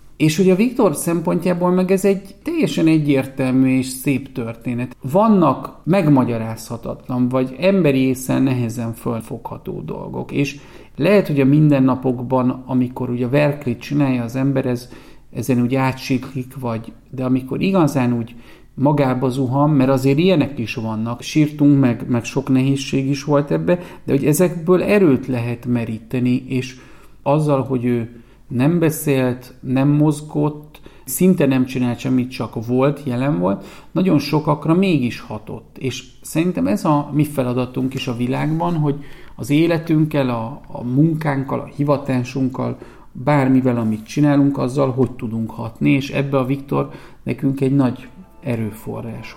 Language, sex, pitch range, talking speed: Hungarian, male, 125-150 Hz, 140 wpm